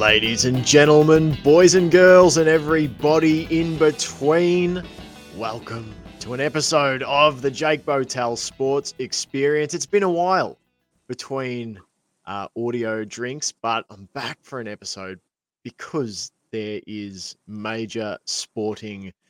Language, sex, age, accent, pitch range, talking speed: English, male, 20-39, Australian, 110-140 Hz, 120 wpm